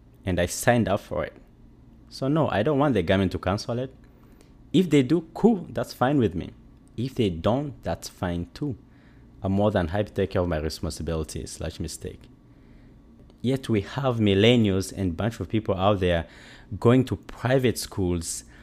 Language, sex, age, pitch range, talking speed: English, male, 30-49, 90-120 Hz, 180 wpm